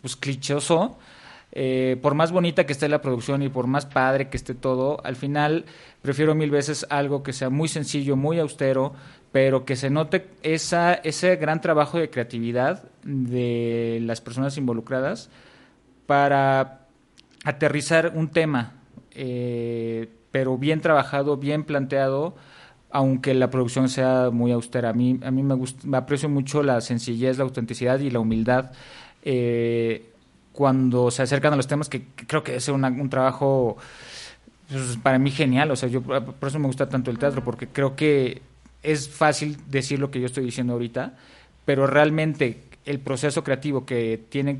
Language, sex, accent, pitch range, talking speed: Spanish, male, Mexican, 120-145 Hz, 165 wpm